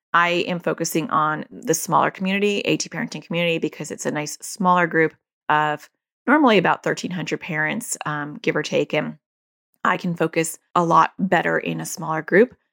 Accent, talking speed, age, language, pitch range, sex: American, 170 wpm, 30-49, English, 160-215 Hz, female